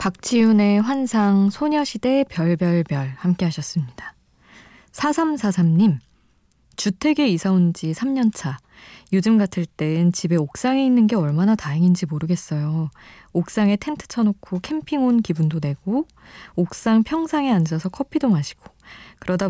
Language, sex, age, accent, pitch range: Korean, female, 20-39, native, 160-215 Hz